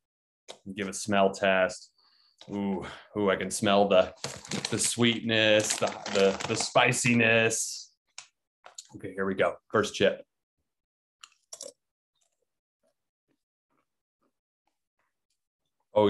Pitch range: 95-120 Hz